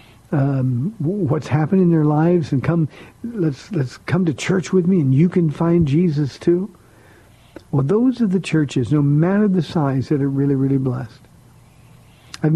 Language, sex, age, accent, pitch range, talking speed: English, male, 50-69, American, 130-160 Hz, 170 wpm